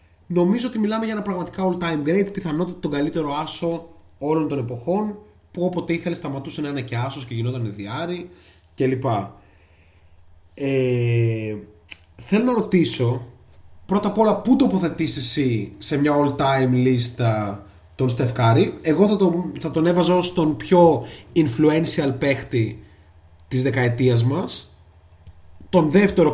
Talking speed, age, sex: 145 wpm, 30-49, male